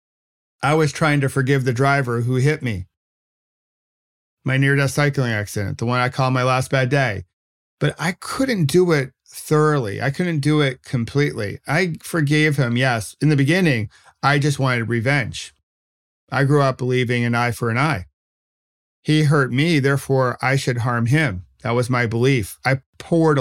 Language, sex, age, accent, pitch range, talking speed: English, male, 40-59, American, 110-140 Hz, 170 wpm